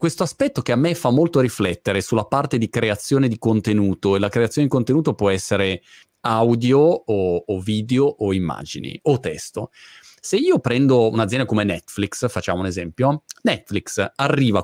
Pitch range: 105-155 Hz